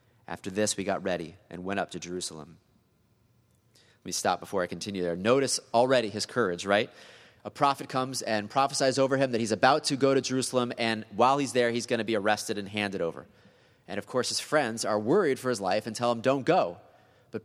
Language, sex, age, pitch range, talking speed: English, male, 30-49, 100-125 Hz, 220 wpm